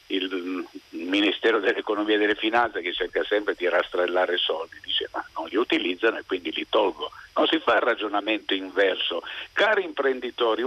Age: 50-69